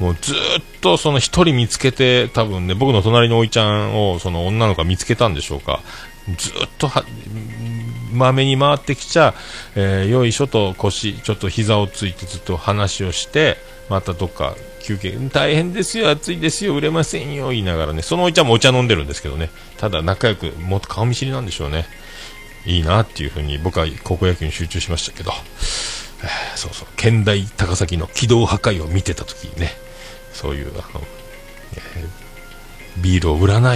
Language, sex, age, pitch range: Japanese, male, 40-59, 90-120 Hz